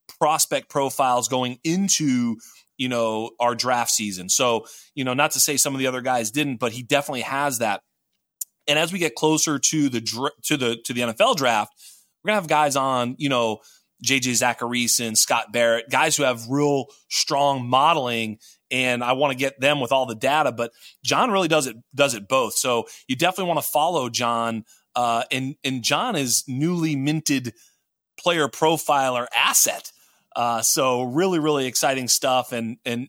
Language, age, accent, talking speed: English, 30-49, American, 180 wpm